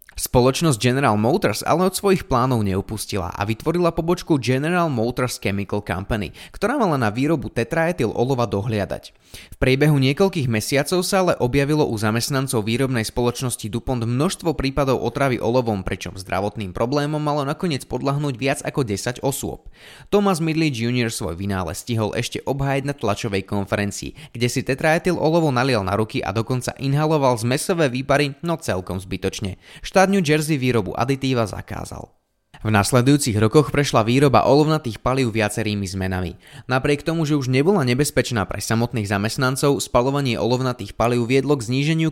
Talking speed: 150 wpm